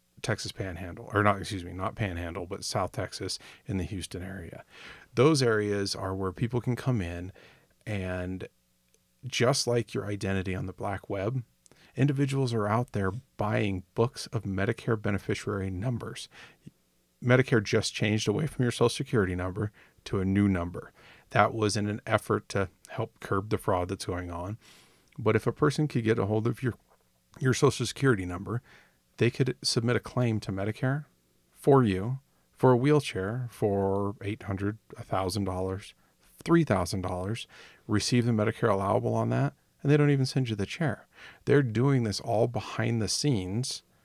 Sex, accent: male, American